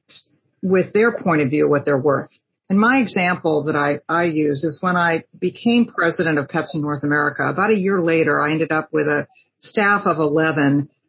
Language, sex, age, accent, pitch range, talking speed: English, female, 50-69, American, 150-205 Hz, 200 wpm